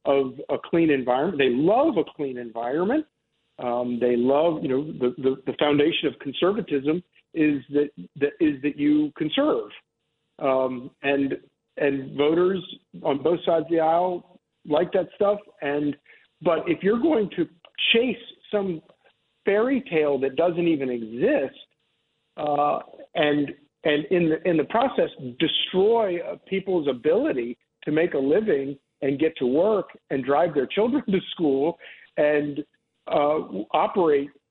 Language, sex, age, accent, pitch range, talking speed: English, male, 50-69, American, 140-180 Hz, 145 wpm